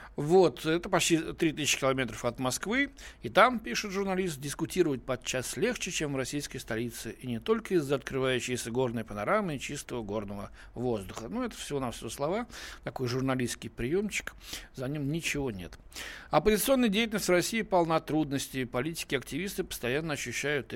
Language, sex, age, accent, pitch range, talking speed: Russian, male, 60-79, native, 120-165 Hz, 150 wpm